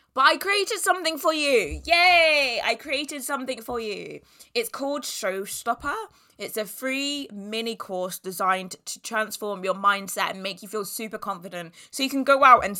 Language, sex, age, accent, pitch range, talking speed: English, female, 20-39, British, 185-245 Hz, 175 wpm